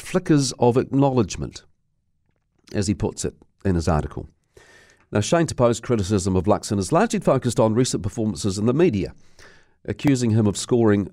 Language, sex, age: English, male, 50-69